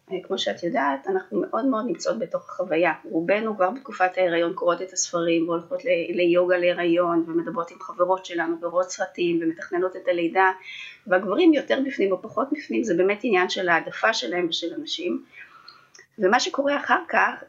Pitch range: 180-290 Hz